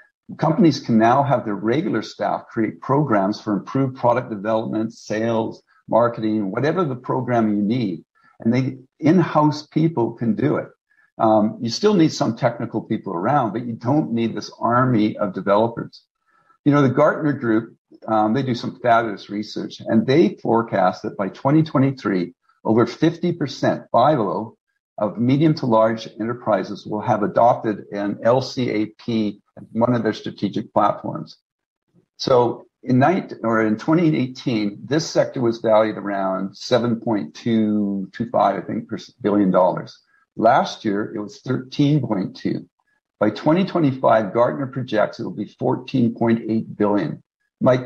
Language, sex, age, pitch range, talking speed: English, male, 50-69, 110-145 Hz, 135 wpm